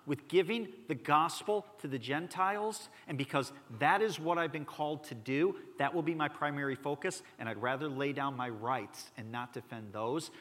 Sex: male